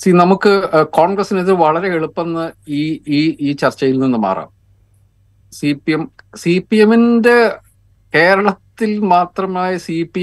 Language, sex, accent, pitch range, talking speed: Malayalam, male, native, 115-160 Hz, 125 wpm